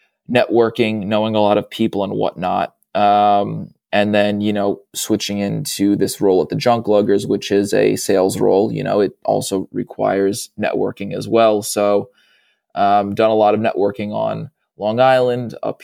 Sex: male